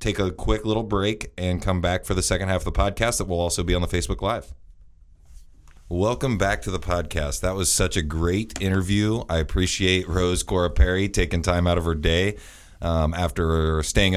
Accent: American